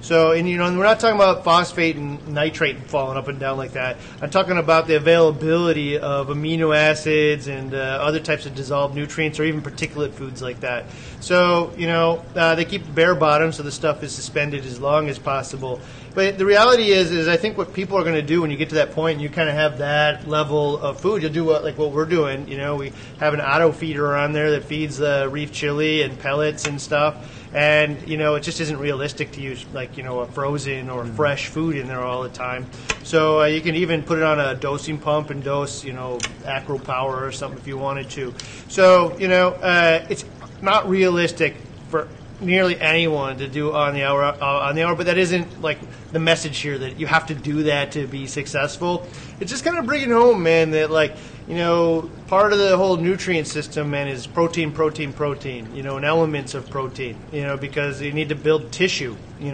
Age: 30-49